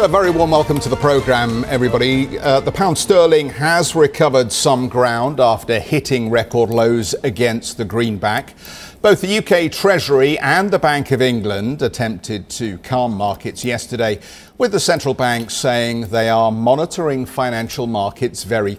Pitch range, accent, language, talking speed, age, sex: 110-140 Hz, British, English, 155 wpm, 50-69, male